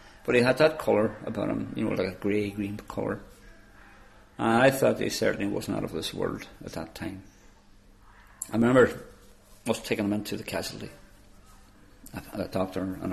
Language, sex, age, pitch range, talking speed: English, male, 50-69, 95-110 Hz, 185 wpm